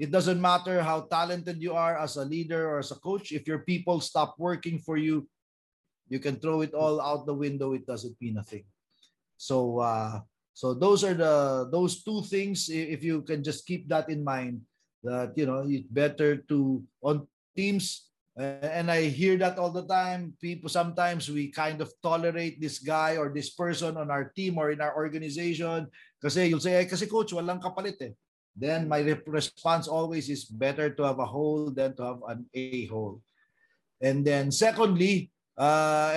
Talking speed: 185 wpm